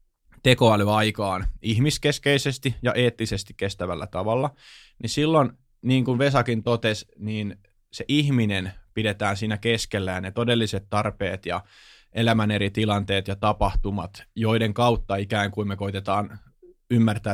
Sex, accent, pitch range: male, native, 100-120 Hz